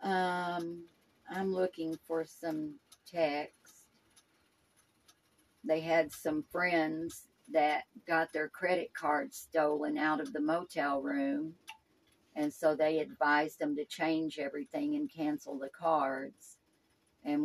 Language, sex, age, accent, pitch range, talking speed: English, female, 50-69, American, 150-180 Hz, 115 wpm